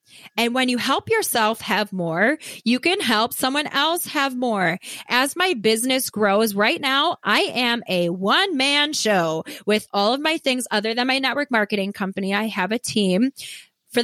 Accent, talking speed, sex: American, 175 wpm, female